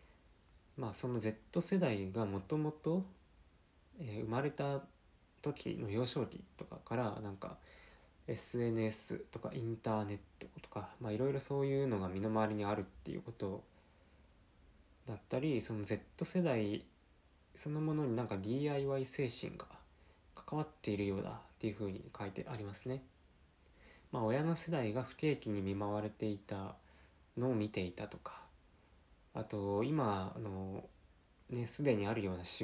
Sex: male